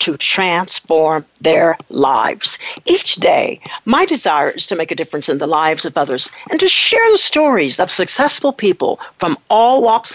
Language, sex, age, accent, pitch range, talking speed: English, female, 60-79, American, 165-265 Hz, 170 wpm